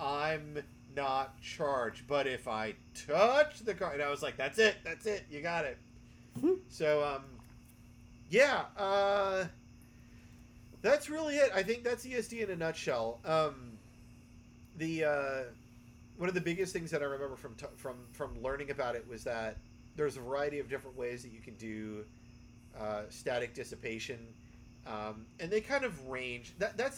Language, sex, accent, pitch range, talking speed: English, male, American, 120-160 Hz, 165 wpm